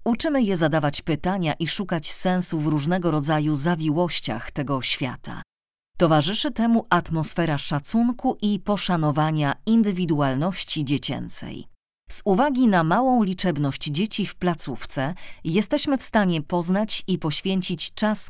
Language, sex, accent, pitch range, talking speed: Polish, female, native, 145-200 Hz, 120 wpm